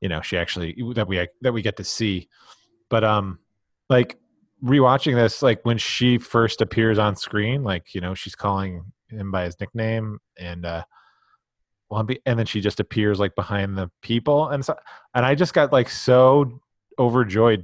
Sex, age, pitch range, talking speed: male, 30-49, 100-120 Hz, 175 wpm